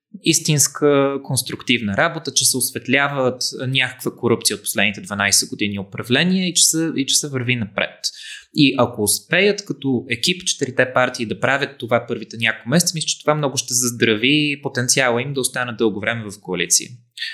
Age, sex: 20-39, male